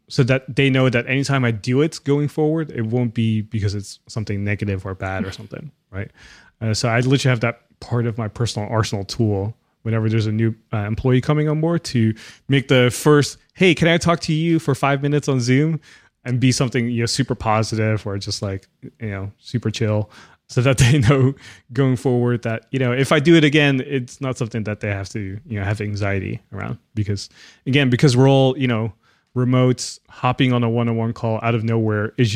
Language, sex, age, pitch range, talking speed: English, male, 20-39, 110-135 Hz, 215 wpm